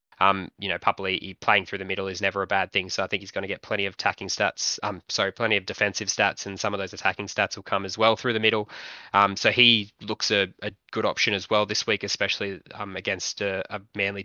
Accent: Australian